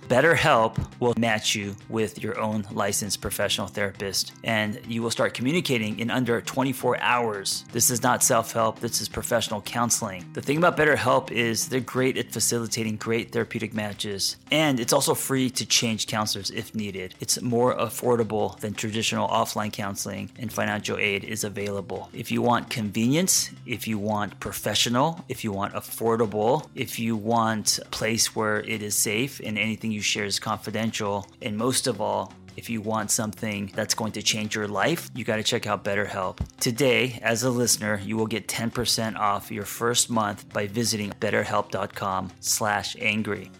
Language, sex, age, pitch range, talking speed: English, male, 30-49, 105-120 Hz, 170 wpm